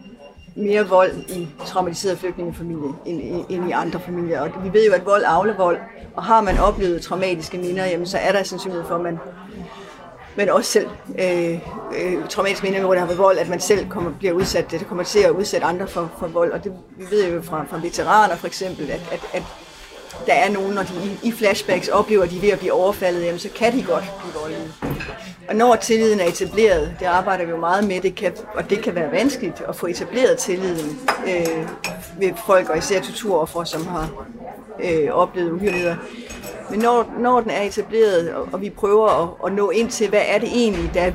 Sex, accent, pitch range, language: female, native, 175-205 Hz, Danish